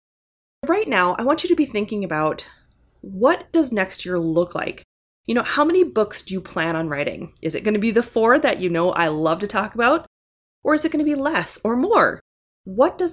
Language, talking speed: English, 235 wpm